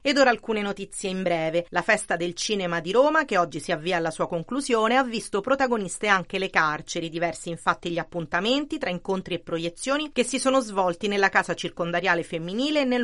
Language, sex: Italian, female